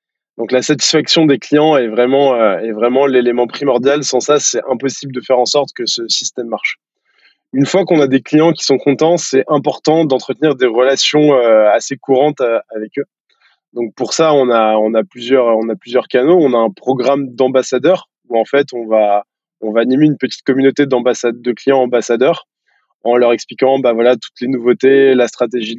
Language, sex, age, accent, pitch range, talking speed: French, male, 20-39, French, 120-150 Hz, 195 wpm